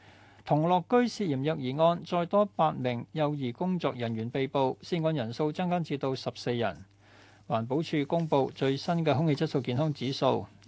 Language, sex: Chinese, male